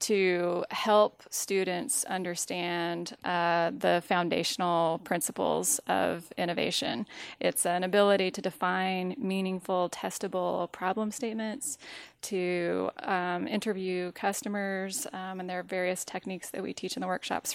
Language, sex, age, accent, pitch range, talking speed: English, female, 20-39, American, 180-210 Hz, 120 wpm